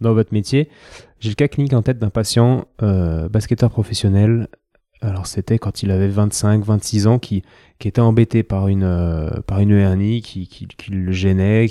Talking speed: 185 wpm